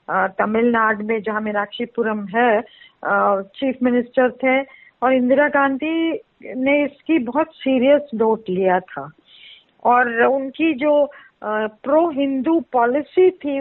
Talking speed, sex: 110 wpm, female